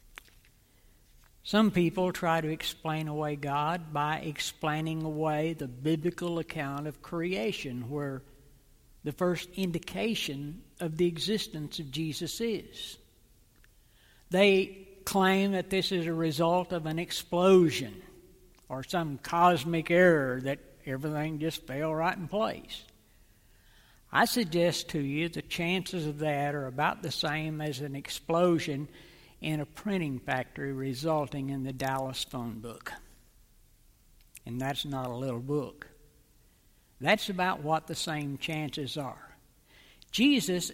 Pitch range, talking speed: 135-175 Hz, 125 wpm